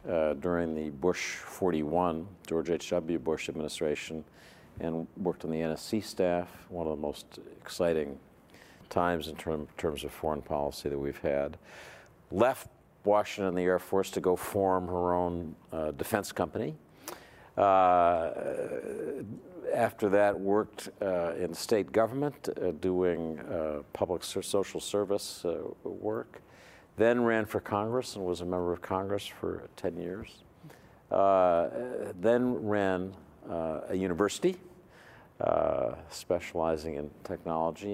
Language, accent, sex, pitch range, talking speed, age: English, American, male, 80-105 Hz, 130 wpm, 50-69